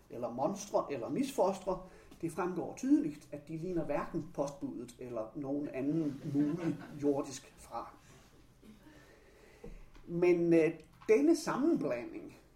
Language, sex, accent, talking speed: Danish, male, native, 105 wpm